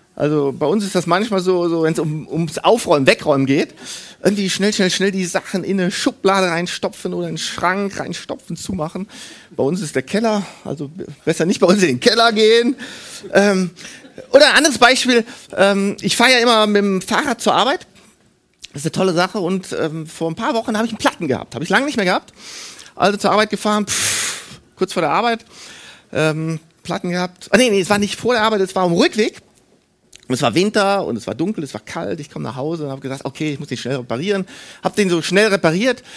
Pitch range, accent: 170-220 Hz, German